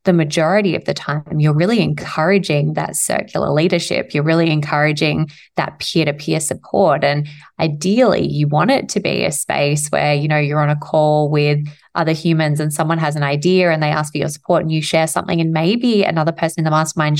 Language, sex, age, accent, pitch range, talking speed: English, female, 20-39, Australian, 150-180 Hz, 210 wpm